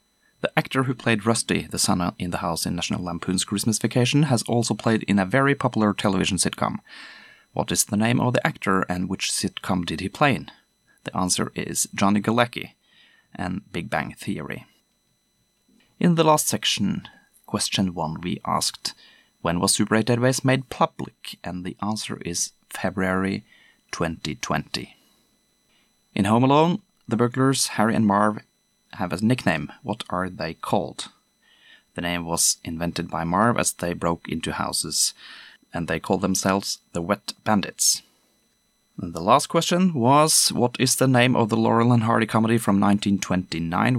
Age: 30-49